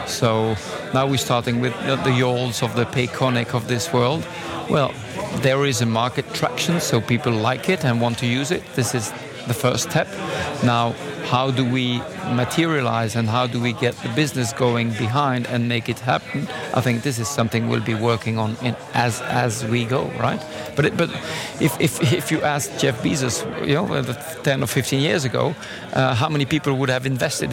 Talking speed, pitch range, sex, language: 195 wpm, 120-145 Hz, male, English